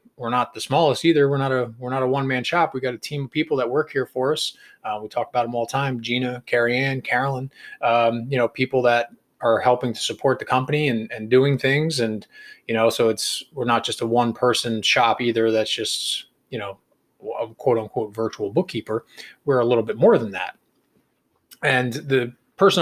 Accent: American